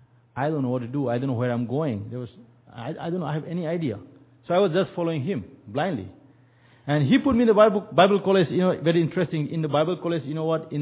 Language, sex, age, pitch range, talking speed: English, male, 50-69, 120-155 Hz, 275 wpm